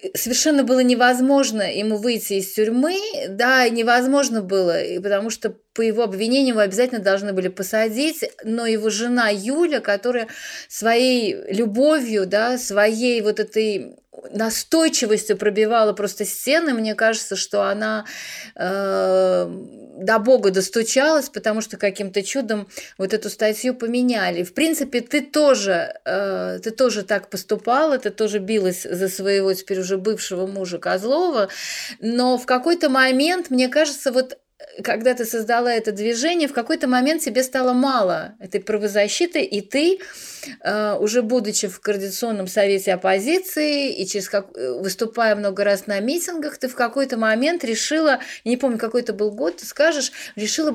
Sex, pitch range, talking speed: female, 210-265 Hz, 140 wpm